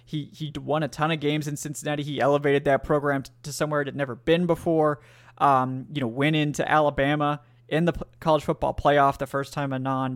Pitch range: 140-165 Hz